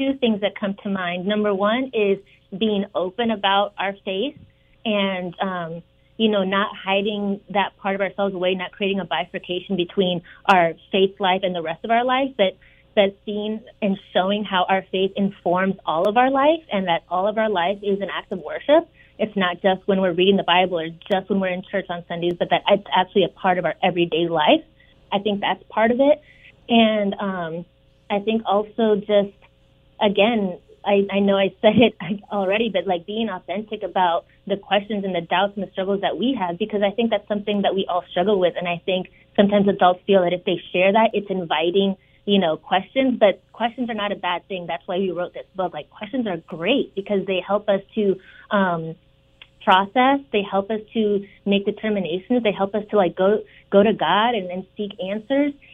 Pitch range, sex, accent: 185-210 Hz, female, American